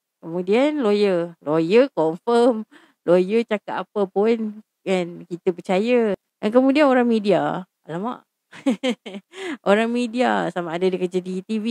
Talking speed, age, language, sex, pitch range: 125 wpm, 30-49, Malay, female, 185-240 Hz